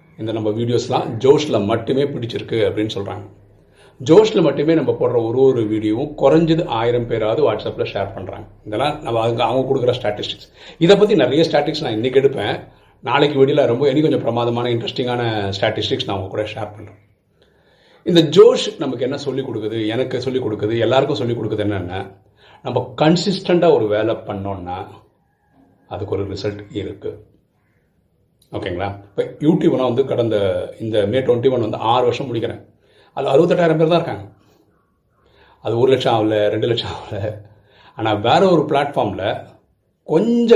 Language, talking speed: Tamil, 70 wpm